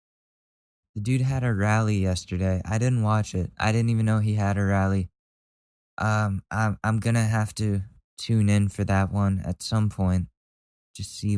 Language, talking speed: English, 180 wpm